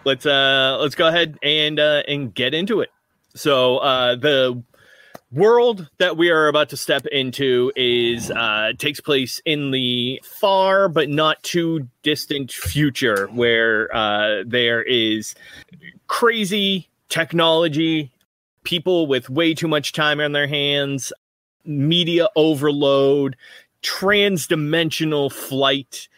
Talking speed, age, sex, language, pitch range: 120 wpm, 30-49, male, English, 125-165 Hz